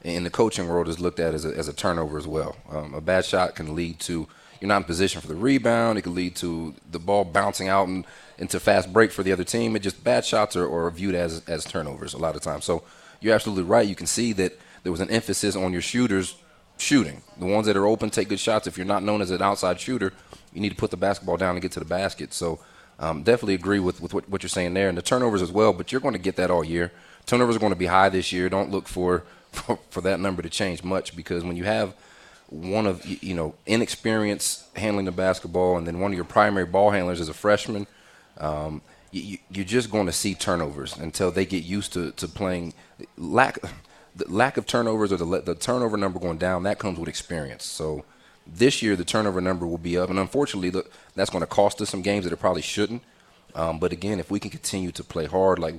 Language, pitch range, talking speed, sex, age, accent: English, 85-100 Hz, 250 wpm, male, 30-49, American